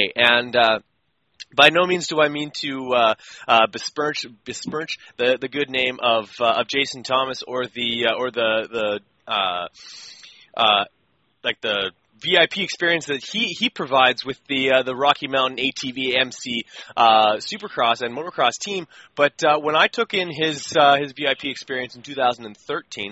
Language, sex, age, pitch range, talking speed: English, male, 20-39, 125-150 Hz, 165 wpm